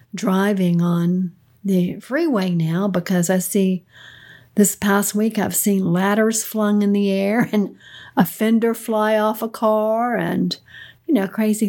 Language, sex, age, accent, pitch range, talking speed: English, female, 60-79, American, 180-215 Hz, 150 wpm